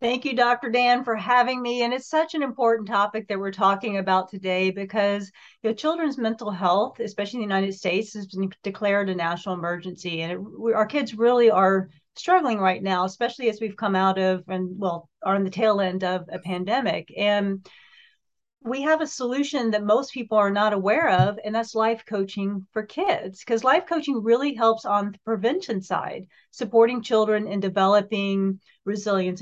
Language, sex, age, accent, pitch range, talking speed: English, female, 40-59, American, 190-235 Hz, 180 wpm